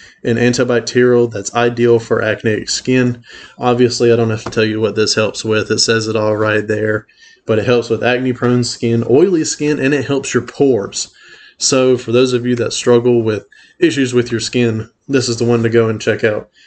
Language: English